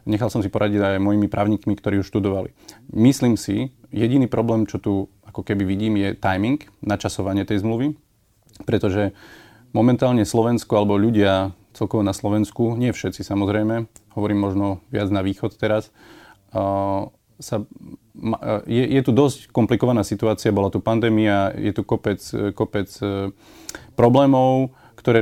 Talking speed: 140 wpm